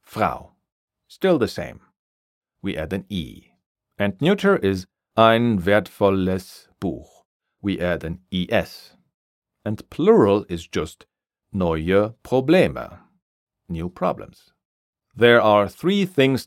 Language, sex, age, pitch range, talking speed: German, male, 40-59, 90-115 Hz, 110 wpm